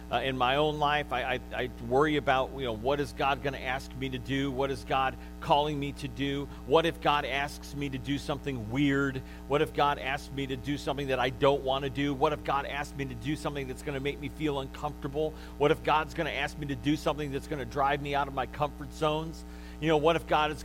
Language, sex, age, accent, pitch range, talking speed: English, male, 40-59, American, 140-160 Hz, 265 wpm